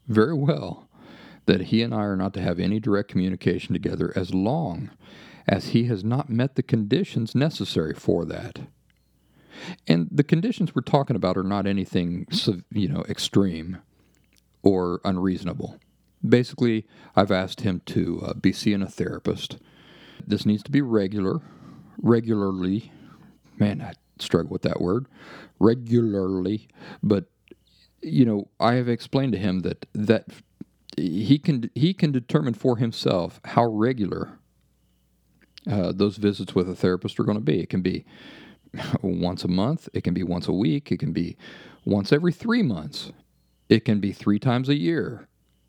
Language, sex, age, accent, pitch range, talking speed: English, male, 50-69, American, 95-120 Hz, 155 wpm